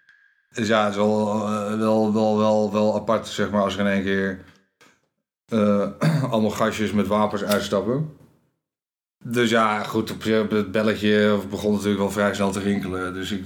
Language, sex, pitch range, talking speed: Dutch, male, 100-110 Hz, 170 wpm